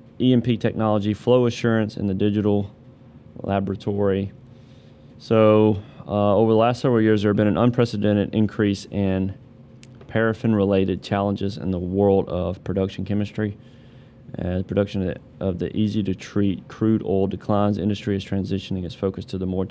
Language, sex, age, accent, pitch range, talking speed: English, male, 30-49, American, 95-115 Hz, 150 wpm